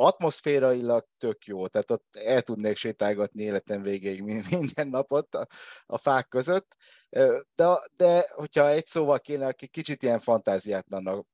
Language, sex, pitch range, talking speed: Hungarian, male, 100-135 Hz, 140 wpm